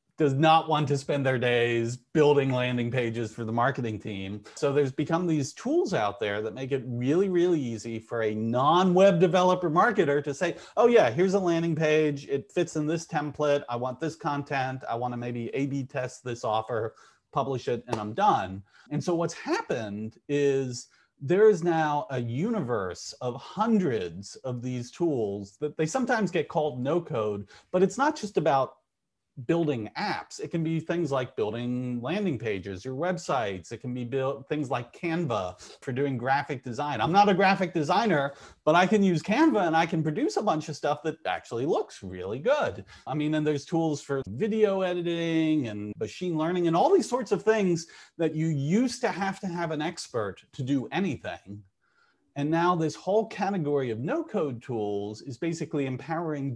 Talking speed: 185 wpm